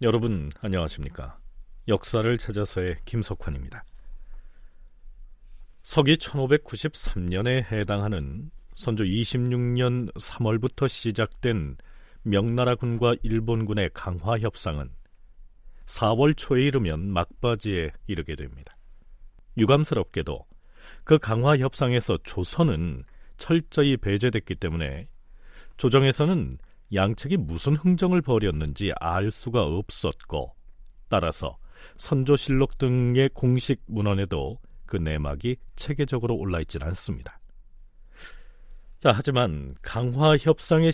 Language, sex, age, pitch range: Korean, male, 40-59, 95-135 Hz